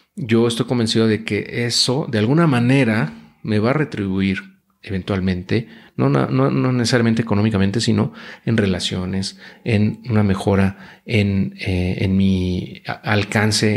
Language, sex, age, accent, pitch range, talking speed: Spanish, male, 40-59, Mexican, 100-120 Hz, 135 wpm